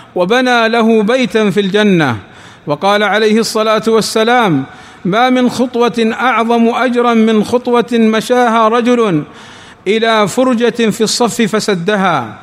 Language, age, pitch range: Arabic, 50-69, 205-235 Hz